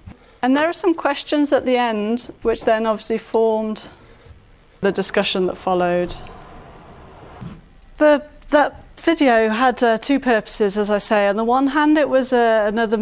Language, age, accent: English, 30-49, British